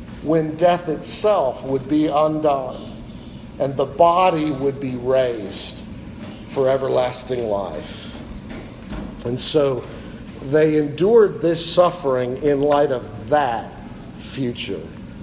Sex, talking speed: male, 100 wpm